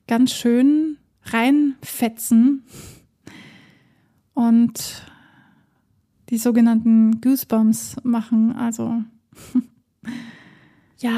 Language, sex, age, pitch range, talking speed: German, female, 30-49, 230-260 Hz, 55 wpm